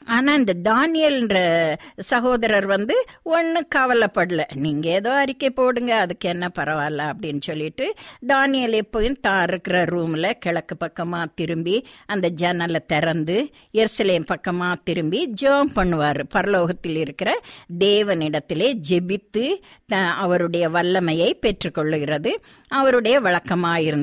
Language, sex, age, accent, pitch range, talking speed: Tamil, female, 50-69, native, 180-275 Hz, 100 wpm